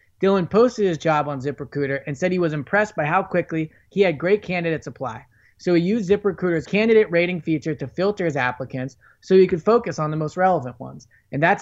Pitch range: 140-185 Hz